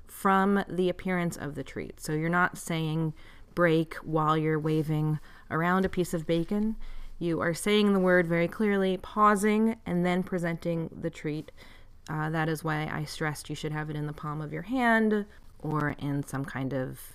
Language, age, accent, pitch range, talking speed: English, 30-49, American, 155-210 Hz, 185 wpm